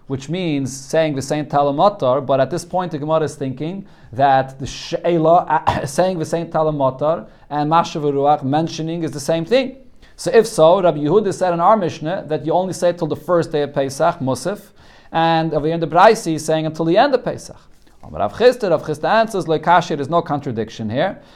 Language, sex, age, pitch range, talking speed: English, male, 40-59, 155-200 Hz, 190 wpm